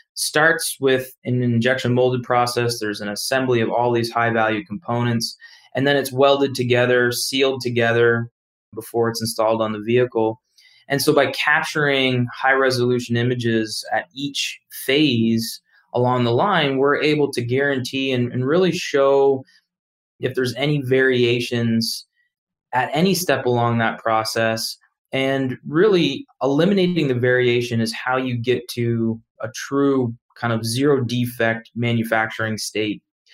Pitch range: 115-135 Hz